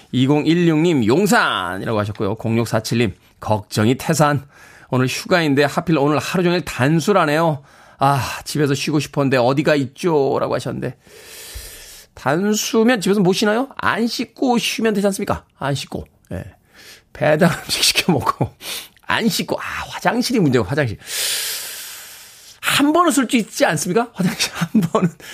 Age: 40-59